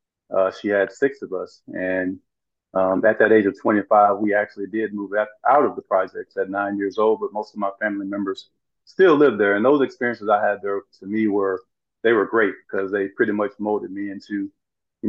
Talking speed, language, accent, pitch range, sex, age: 220 wpm, English, American, 105-115 Hz, male, 40-59